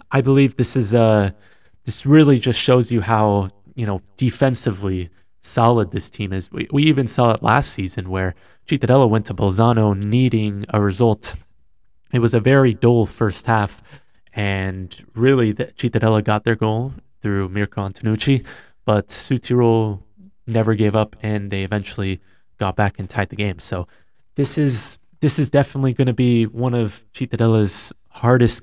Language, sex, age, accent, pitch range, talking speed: English, male, 20-39, American, 100-130 Hz, 160 wpm